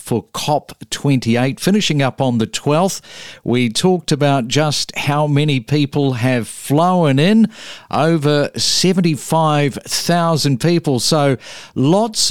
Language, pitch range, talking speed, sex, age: English, 130-170 Hz, 105 wpm, male, 50-69